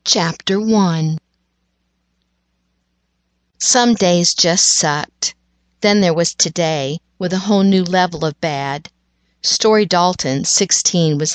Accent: American